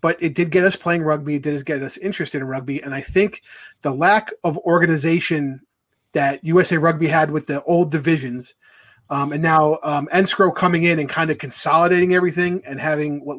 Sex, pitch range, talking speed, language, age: male, 140-170 Hz, 195 wpm, English, 30-49